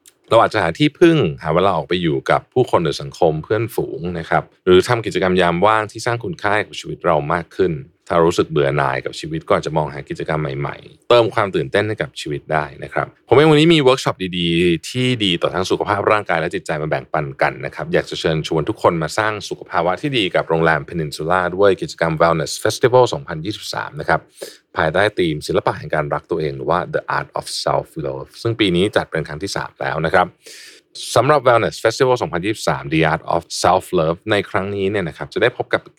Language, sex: Thai, male